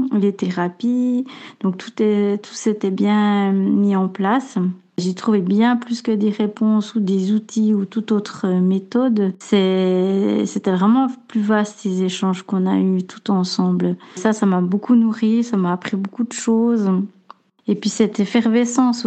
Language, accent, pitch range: French, French, 185-225 Hz